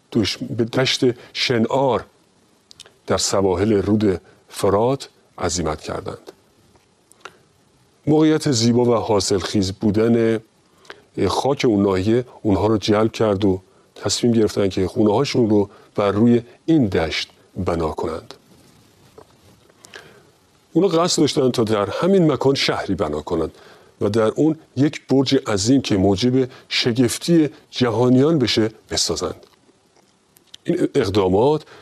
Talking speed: 110 wpm